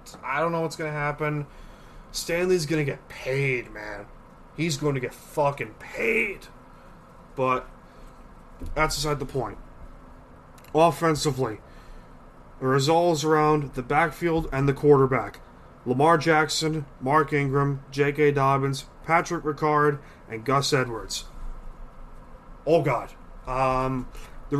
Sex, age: male, 20-39